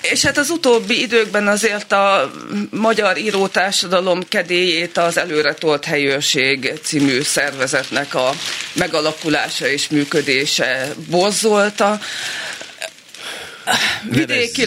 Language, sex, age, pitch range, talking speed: Hungarian, female, 30-49, 145-190 Hz, 85 wpm